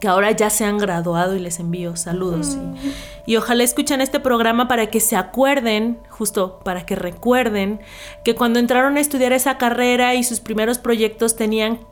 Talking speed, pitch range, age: 175 wpm, 195-230 Hz, 30-49